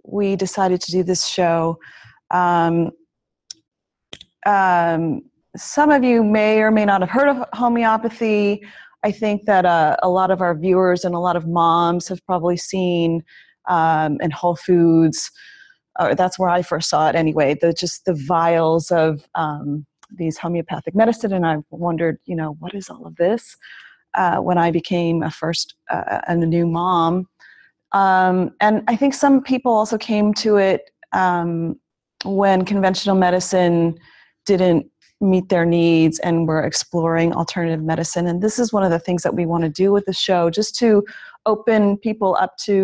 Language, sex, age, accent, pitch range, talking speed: English, female, 30-49, American, 170-205 Hz, 170 wpm